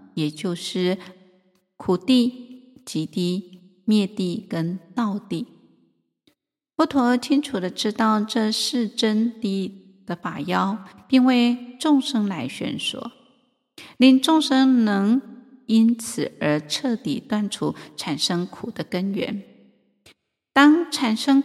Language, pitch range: Chinese, 180-245 Hz